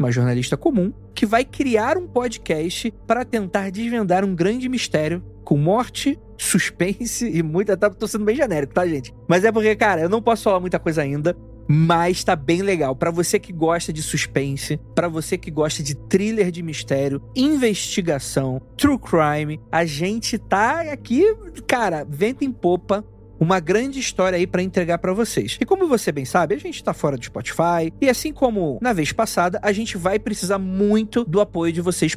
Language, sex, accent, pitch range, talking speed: Portuguese, male, Brazilian, 150-210 Hz, 185 wpm